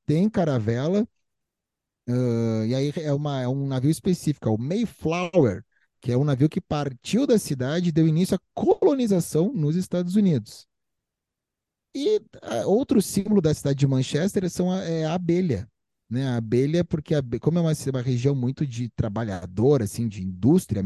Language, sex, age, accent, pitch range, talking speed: Portuguese, male, 30-49, Brazilian, 125-180 Hz, 165 wpm